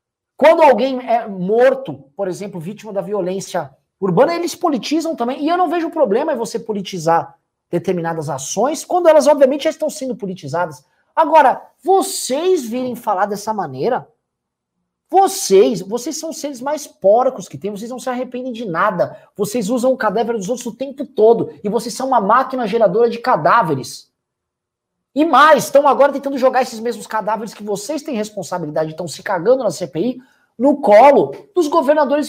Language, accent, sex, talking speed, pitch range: Portuguese, Brazilian, male, 165 wpm, 180-275 Hz